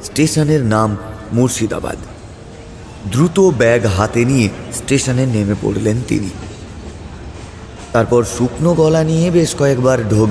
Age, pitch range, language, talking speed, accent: 30-49, 110-150 Hz, Bengali, 100 wpm, native